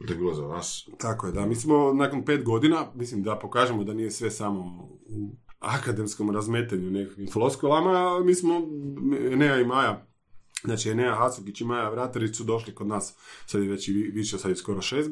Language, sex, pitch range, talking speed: Croatian, male, 105-150 Hz, 180 wpm